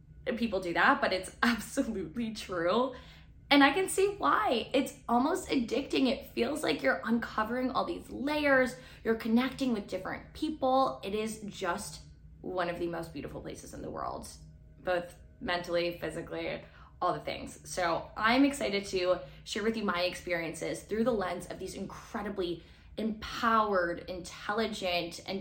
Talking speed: 150 wpm